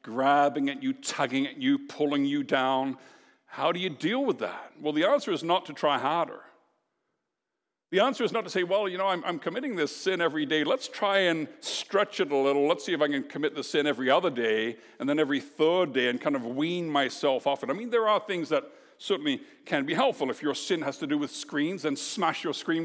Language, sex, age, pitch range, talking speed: English, male, 60-79, 170-260 Hz, 240 wpm